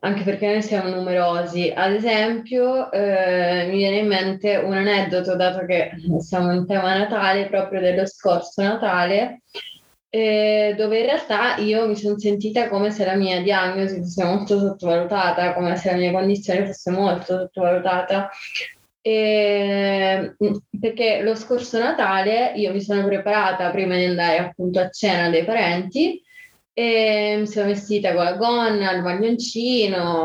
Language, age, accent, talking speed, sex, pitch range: Italian, 20-39, native, 145 wpm, female, 180-210 Hz